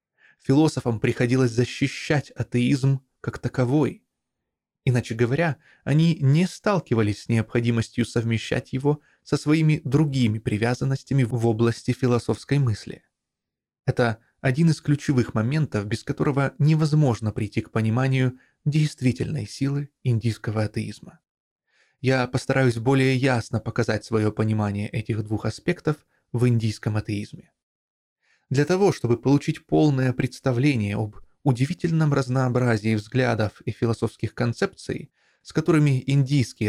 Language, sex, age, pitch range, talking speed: Russian, male, 20-39, 115-150 Hz, 110 wpm